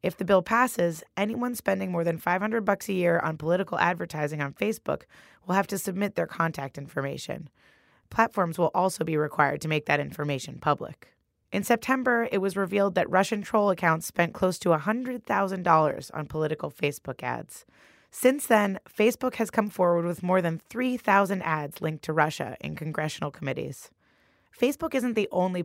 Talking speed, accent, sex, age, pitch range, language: 170 wpm, American, female, 20-39, 155-205 Hz, English